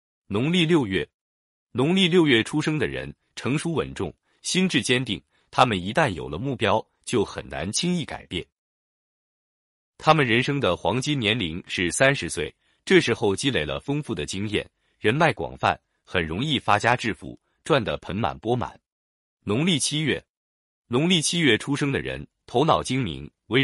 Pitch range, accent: 90-145 Hz, native